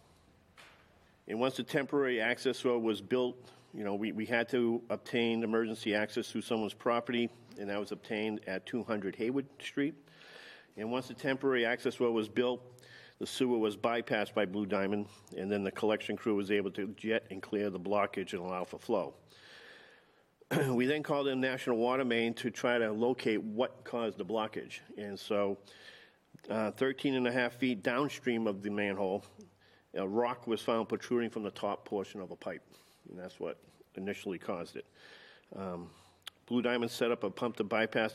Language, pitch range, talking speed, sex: English, 105-125 Hz, 180 wpm, male